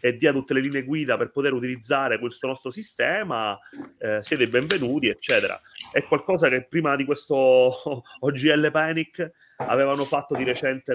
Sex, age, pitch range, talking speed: male, 30-49, 115-145 Hz, 155 wpm